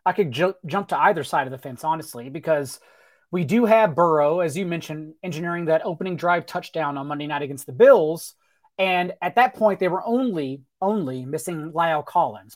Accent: American